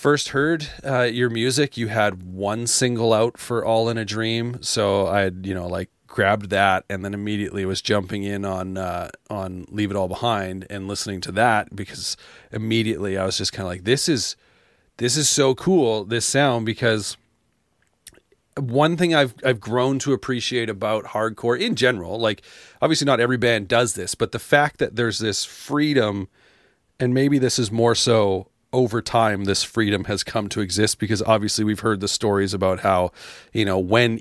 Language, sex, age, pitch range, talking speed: English, male, 30-49, 100-120 Hz, 190 wpm